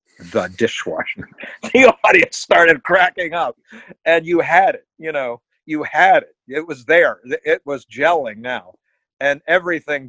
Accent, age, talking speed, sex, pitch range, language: American, 50-69, 150 wpm, male, 130-220 Hz, English